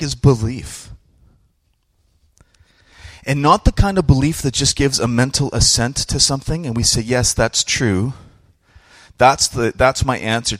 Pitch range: 90-115 Hz